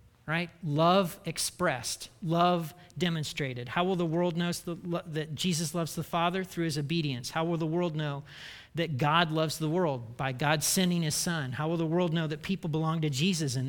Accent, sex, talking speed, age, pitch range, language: American, male, 195 wpm, 40-59, 140-180 Hz, English